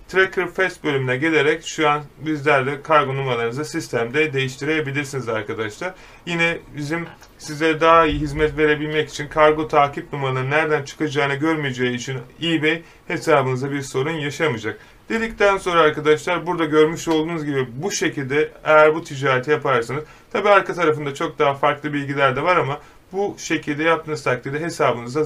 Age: 30-49